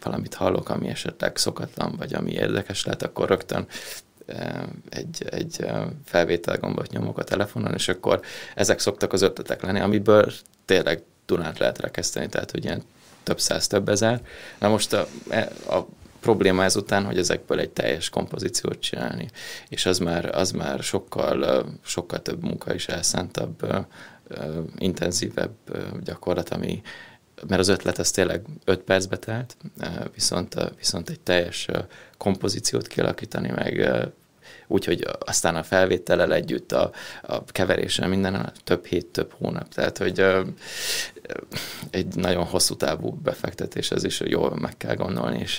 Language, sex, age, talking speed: Hungarian, male, 20-39, 140 wpm